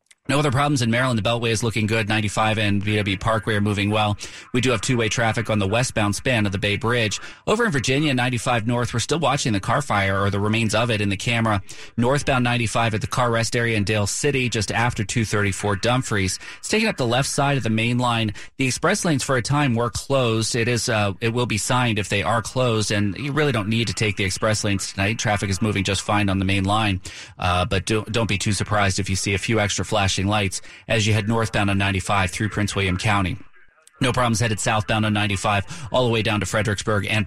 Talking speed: 240 wpm